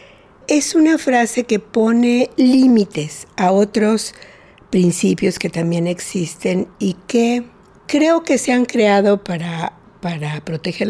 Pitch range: 165-230 Hz